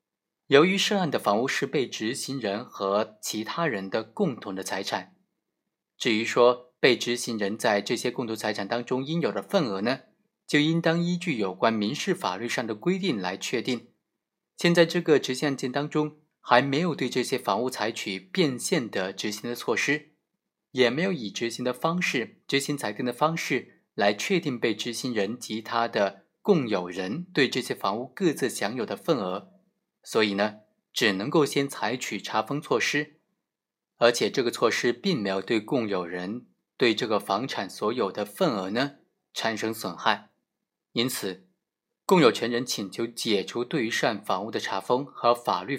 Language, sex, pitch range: Chinese, male, 110-150 Hz